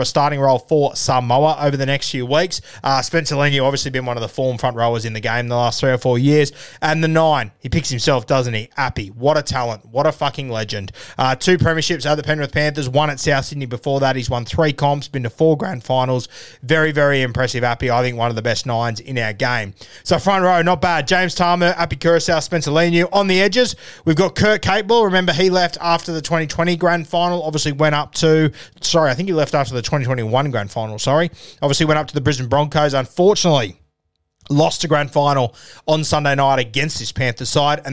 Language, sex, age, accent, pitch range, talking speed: English, male, 20-39, Australian, 125-160 Hz, 230 wpm